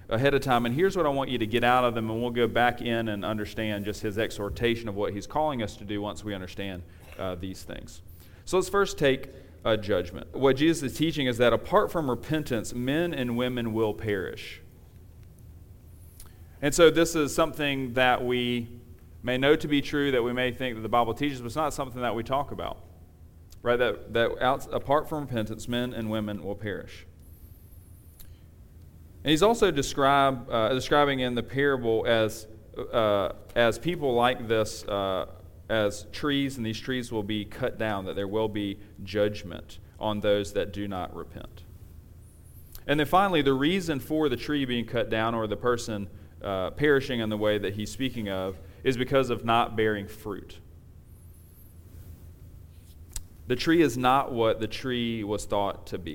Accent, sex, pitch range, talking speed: American, male, 95-125 Hz, 185 wpm